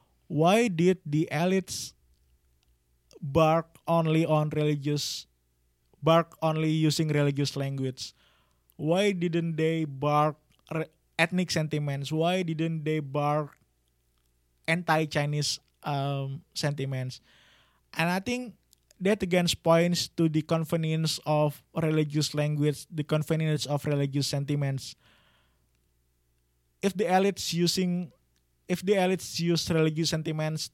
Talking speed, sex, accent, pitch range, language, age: 105 wpm, male, Indonesian, 140-165 Hz, English, 20-39